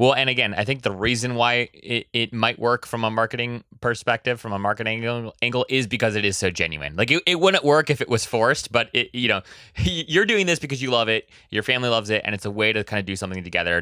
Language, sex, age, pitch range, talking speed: English, male, 20-39, 100-130 Hz, 265 wpm